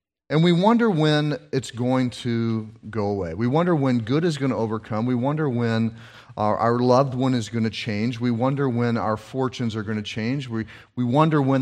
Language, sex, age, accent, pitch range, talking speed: English, male, 40-59, American, 110-135 Hz, 210 wpm